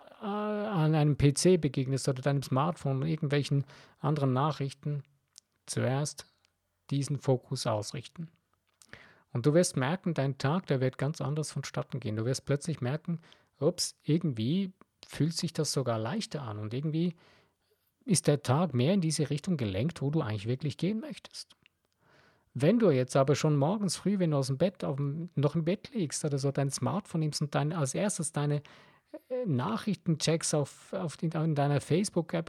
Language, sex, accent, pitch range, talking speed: German, male, German, 135-175 Hz, 165 wpm